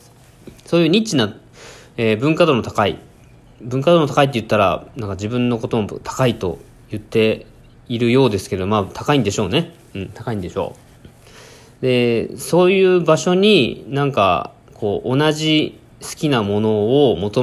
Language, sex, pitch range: Japanese, male, 110-150 Hz